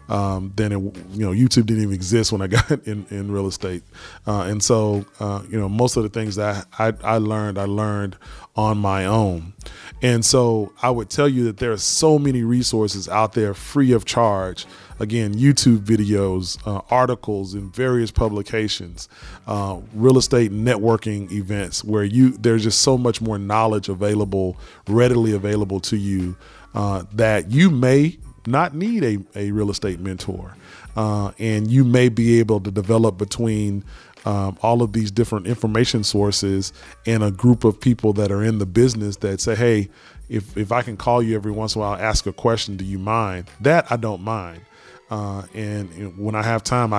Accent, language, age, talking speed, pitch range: American, English, 30-49, 185 wpm, 100-115 Hz